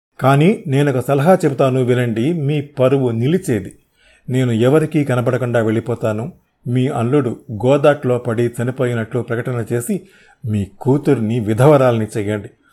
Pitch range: 120-150 Hz